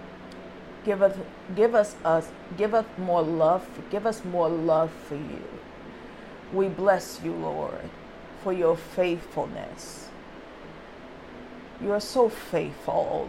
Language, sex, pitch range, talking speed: English, female, 160-215 Hz, 125 wpm